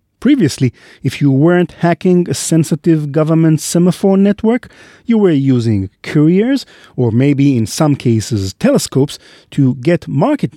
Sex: male